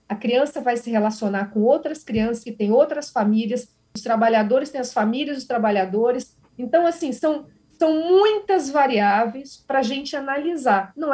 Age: 40-59